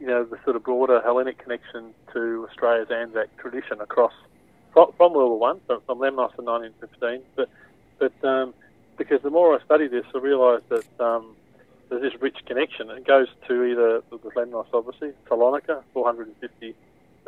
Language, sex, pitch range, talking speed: English, male, 115-135 Hz, 175 wpm